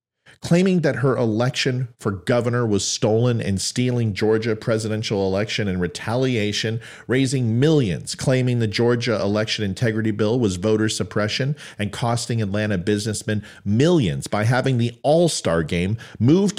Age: 40-59